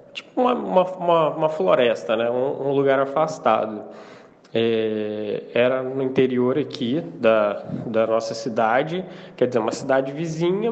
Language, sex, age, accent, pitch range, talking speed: Portuguese, male, 20-39, Brazilian, 130-180 Hz, 135 wpm